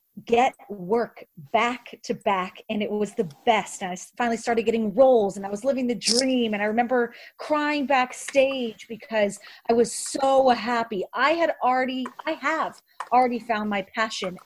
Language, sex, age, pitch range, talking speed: English, female, 30-49, 205-250 Hz, 165 wpm